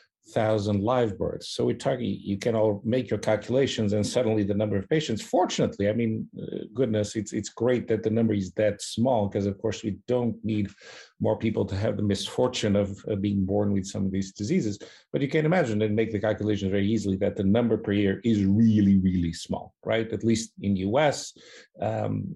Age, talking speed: 50-69, 210 wpm